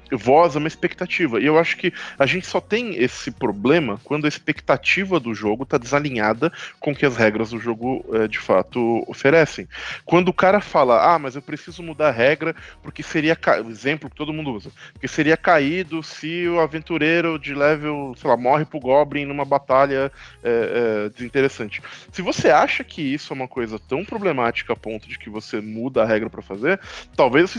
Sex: male